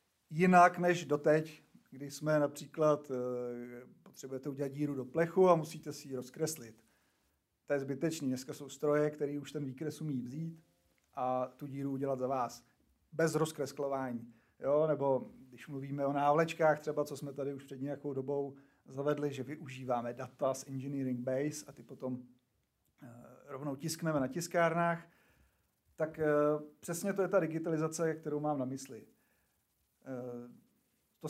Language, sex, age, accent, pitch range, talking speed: Czech, male, 40-59, native, 135-160 Hz, 140 wpm